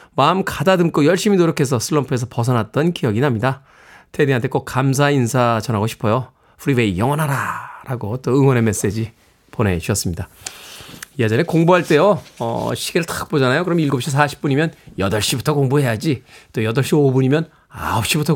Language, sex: Korean, male